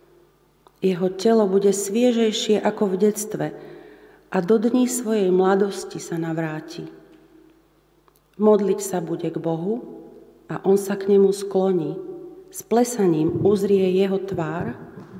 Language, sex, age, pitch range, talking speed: Slovak, female, 40-59, 175-220 Hz, 120 wpm